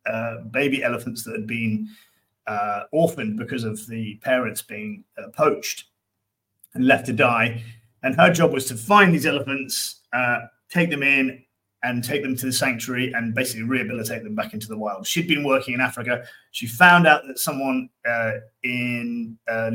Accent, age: British, 30-49